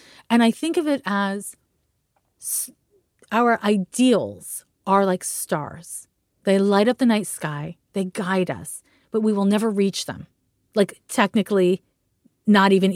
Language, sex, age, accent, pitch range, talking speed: English, female, 30-49, American, 185-245 Hz, 140 wpm